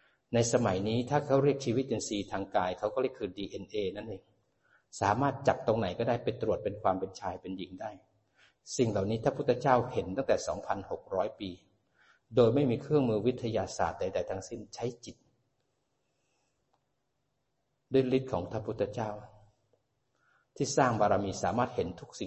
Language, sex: Thai, male